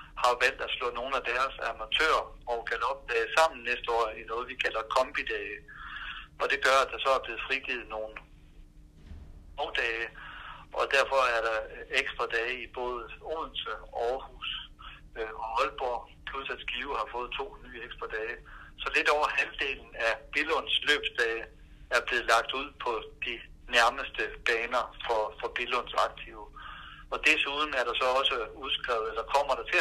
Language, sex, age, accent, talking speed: Danish, male, 60-79, native, 165 wpm